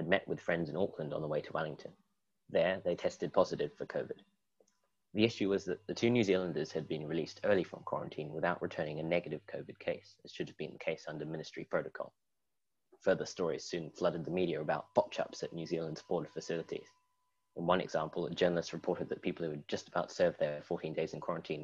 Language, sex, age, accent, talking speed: English, male, 20-39, British, 210 wpm